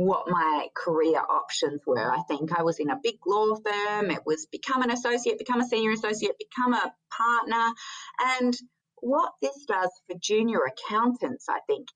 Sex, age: female, 30-49